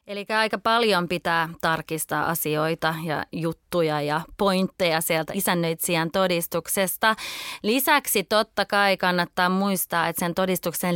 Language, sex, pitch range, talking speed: Finnish, female, 165-195 Hz, 115 wpm